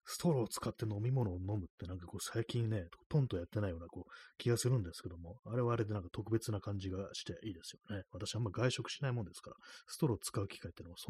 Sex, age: male, 30-49